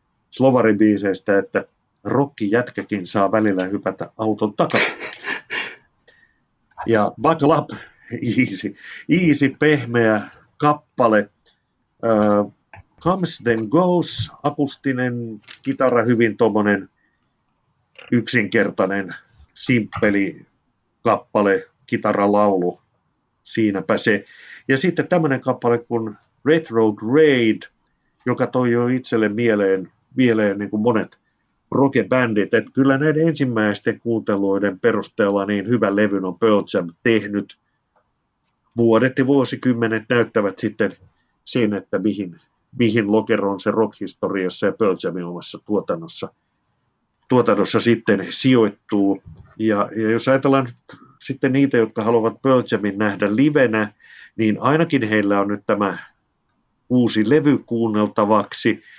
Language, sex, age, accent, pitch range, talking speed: Finnish, male, 50-69, native, 105-130 Hz, 100 wpm